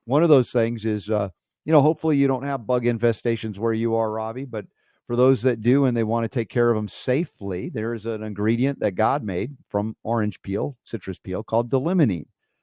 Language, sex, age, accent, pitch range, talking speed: English, male, 50-69, American, 100-125 Hz, 220 wpm